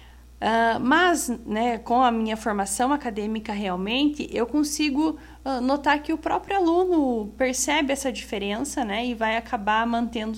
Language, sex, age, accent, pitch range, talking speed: Portuguese, female, 10-29, Brazilian, 225-285 Hz, 140 wpm